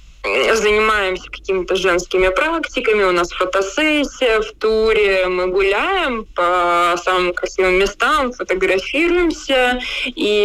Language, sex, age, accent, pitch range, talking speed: Russian, female, 20-39, native, 185-300 Hz, 100 wpm